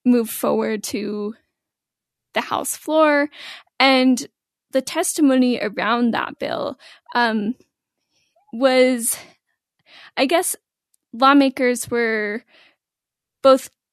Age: 10-29